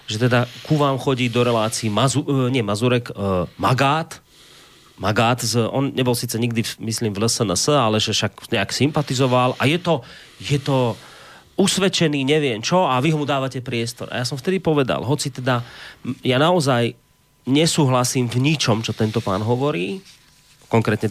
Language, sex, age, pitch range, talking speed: Slovak, male, 30-49, 110-145 Hz, 160 wpm